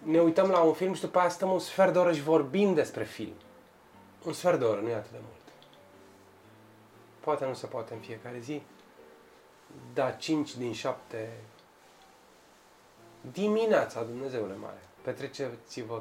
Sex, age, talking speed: male, 20-39, 155 wpm